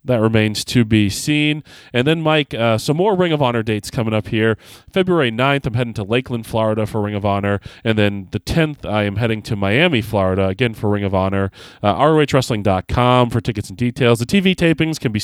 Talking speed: 215 wpm